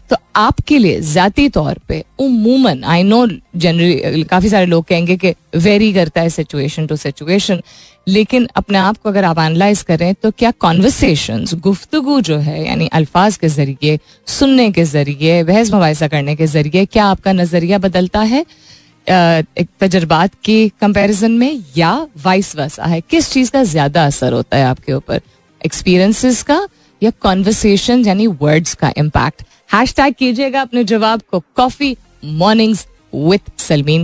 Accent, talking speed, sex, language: native, 140 wpm, female, Hindi